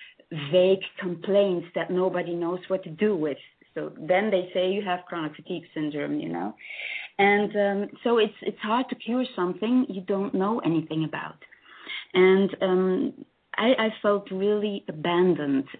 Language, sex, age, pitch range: English, female, 30-49, 160-195 Hz